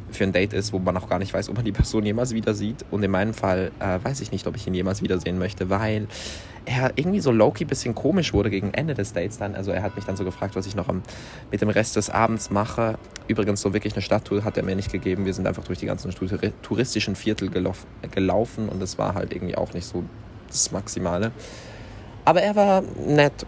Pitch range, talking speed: 95-110 Hz, 245 wpm